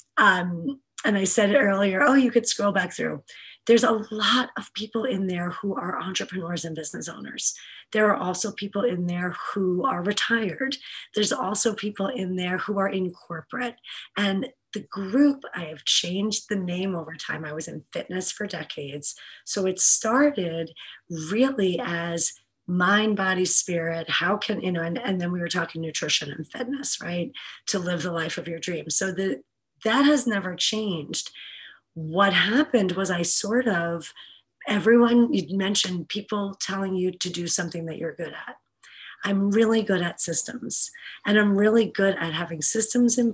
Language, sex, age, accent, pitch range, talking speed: English, female, 30-49, American, 170-215 Hz, 175 wpm